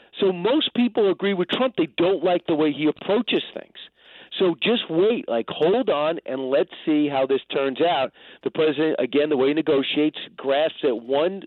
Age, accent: 40-59, American